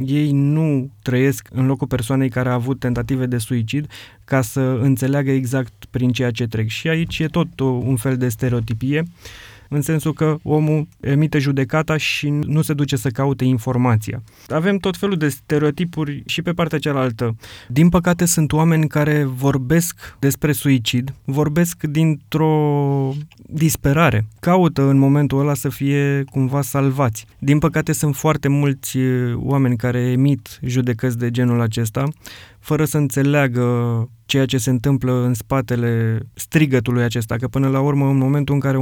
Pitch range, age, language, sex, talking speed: 125-145 Hz, 20-39, Romanian, male, 155 wpm